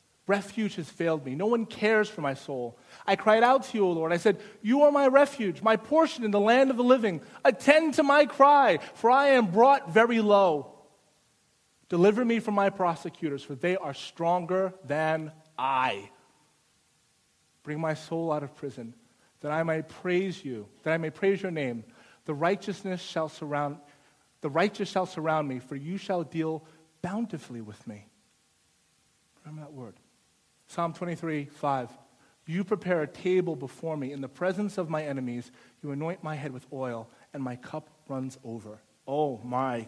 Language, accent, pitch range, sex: English, American, 140-195 Hz, male